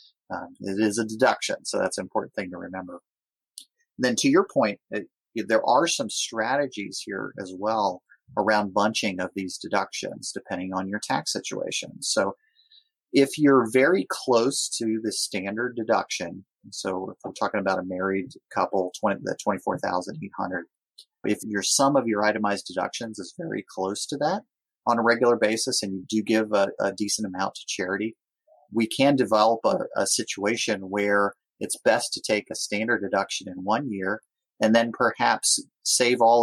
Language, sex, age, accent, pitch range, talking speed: English, male, 30-49, American, 100-130 Hz, 170 wpm